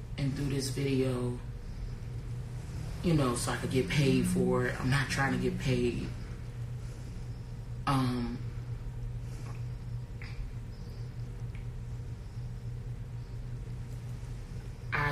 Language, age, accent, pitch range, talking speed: English, 30-49, American, 120-130 Hz, 85 wpm